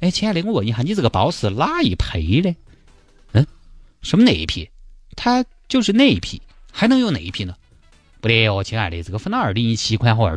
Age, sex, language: 30-49, male, Chinese